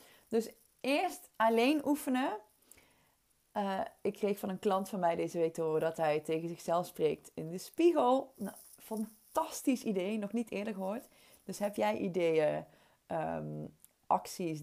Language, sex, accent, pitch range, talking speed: Dutch, female, Dutch, 175-235 Hz, 145 wpm